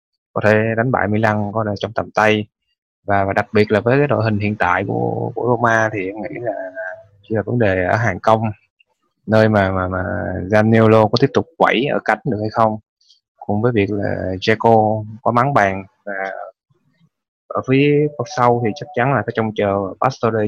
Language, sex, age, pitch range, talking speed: Vietnamese, male, 20-39, 100-115 Hz, 200 wpm